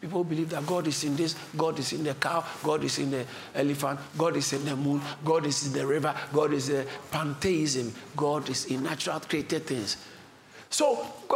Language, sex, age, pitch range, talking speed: English, male, 50-69, 145-240 Hz, 200 wpm